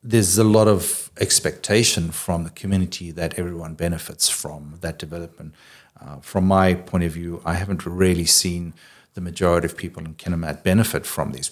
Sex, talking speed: male, 170 wpm